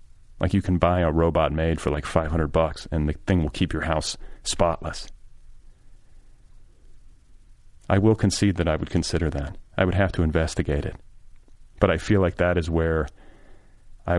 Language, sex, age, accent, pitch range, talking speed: English, male, 40-59, American, 80-95 Hz, 175 wpm